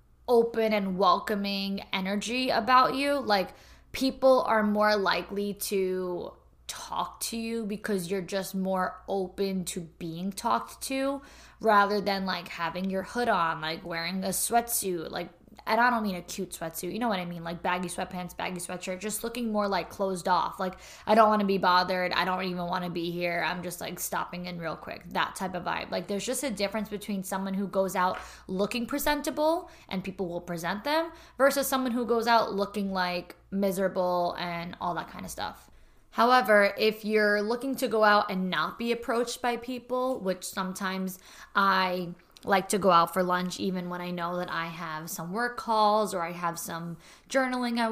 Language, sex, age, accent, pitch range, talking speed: English, female, 10-29, American, 180-220 Hz, 190 wpm